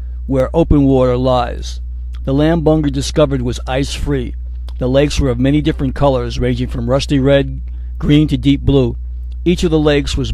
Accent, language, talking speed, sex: American, English, 175 wpm, male